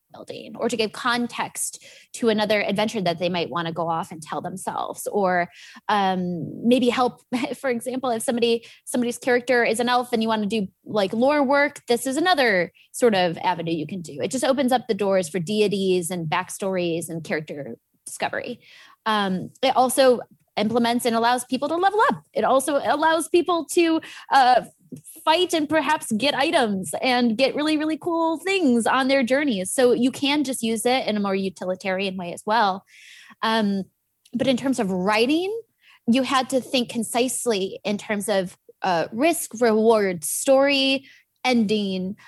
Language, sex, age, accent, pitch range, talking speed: English, female, 20-39, American, 195-270 Hz, 175 wpm